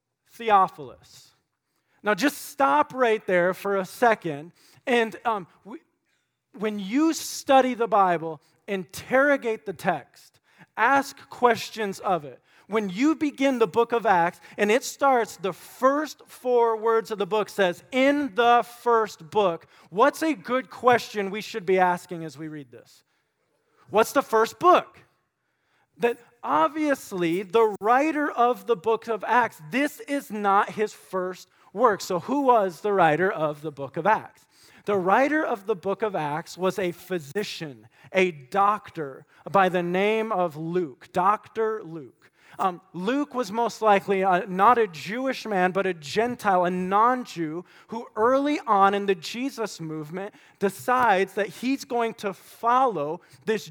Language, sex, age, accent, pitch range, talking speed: English, male, 40-59, American, 185-240 Hz, 150 wpm